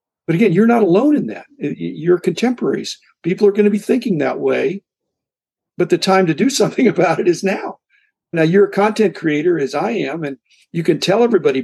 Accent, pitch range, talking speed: American, 160-220 Hz, 205 wpm